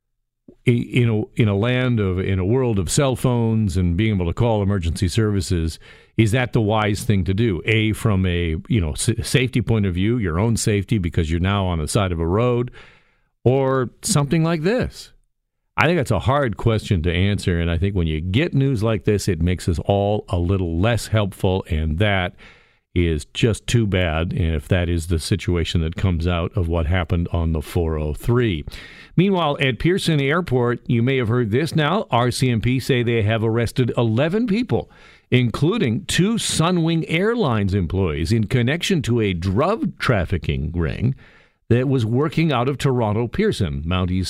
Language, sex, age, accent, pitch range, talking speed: English, male, 50-69, American, 95-125 Hz, 180 wpm